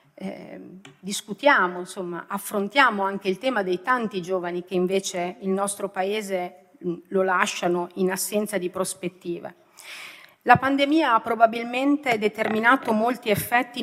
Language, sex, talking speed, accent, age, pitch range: Italian, female, 120 wpm, native, 40-59, 190-235 Hz